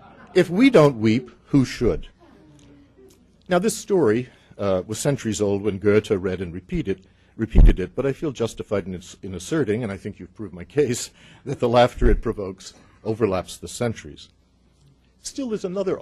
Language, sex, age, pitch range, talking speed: English, male, 60-79, 90-120 Hz, 170 wpm